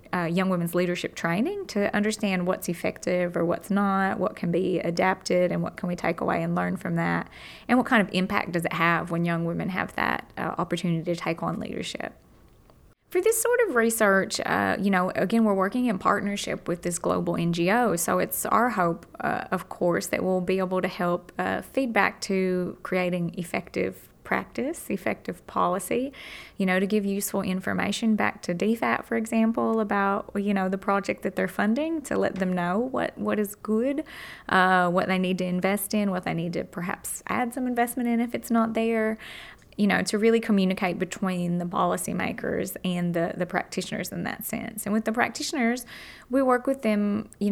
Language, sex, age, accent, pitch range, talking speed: English, female, 20-39, American, 180-220 Hz, 195 wpm